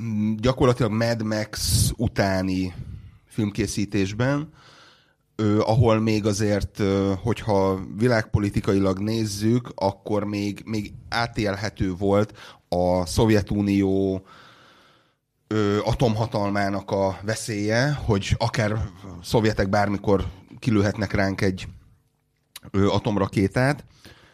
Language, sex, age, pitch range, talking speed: Hungarian, male, 30-49, 95-115 Hz, 70 wpm